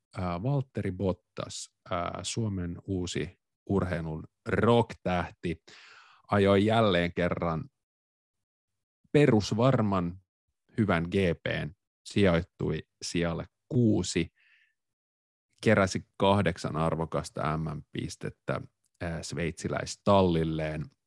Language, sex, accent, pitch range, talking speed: Finnish, male, native, 85-115 Hz, 65 wpm